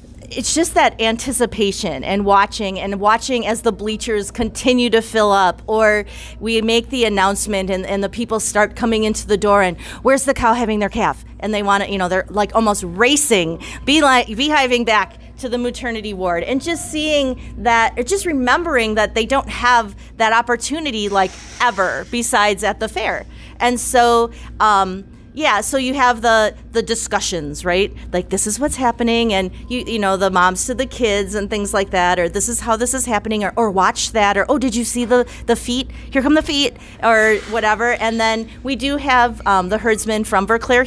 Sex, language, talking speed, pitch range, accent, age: female, English, 200 wpm, 200-245 Hz, American, 30-49